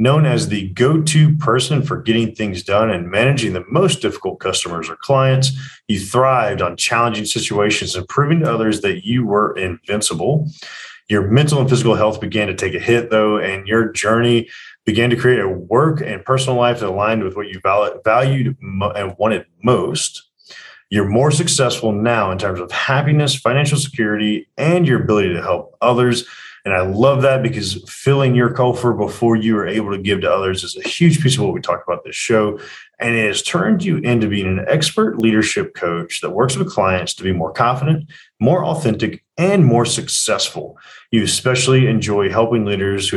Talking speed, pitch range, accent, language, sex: 185 wpm, 105-135 Hz, American, English, male